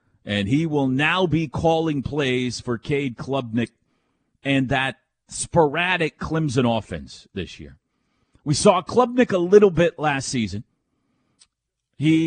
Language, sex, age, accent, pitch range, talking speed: English, male, 40-59, American, 130-175 Hz, 125 wpm